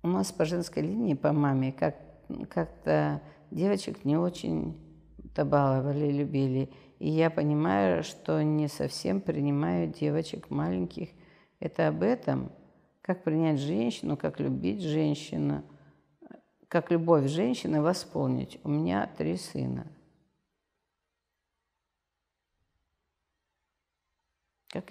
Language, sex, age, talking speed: Russian, female, 50-69, 100 wpm